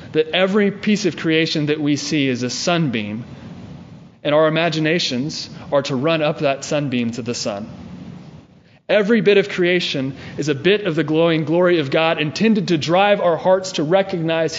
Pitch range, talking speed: 135-180 Hz, 175 wpm